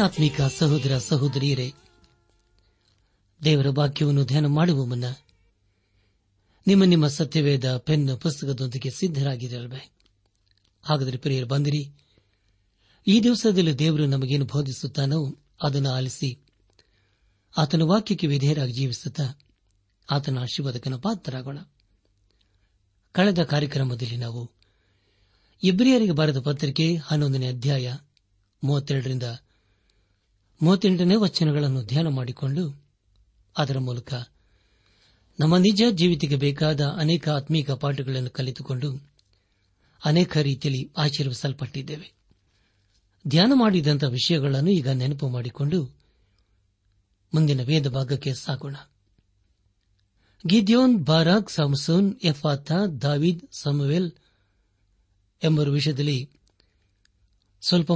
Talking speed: 80 wpm